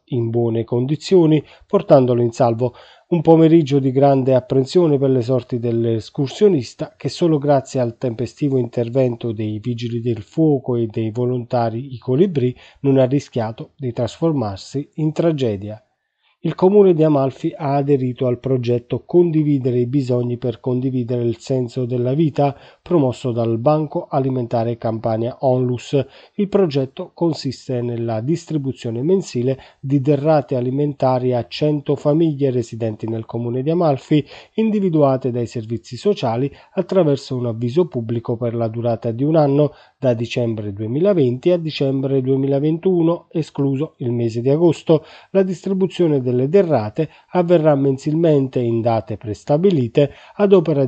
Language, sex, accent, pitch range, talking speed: Italian, male, native, 120-155 Hz, 135 wpm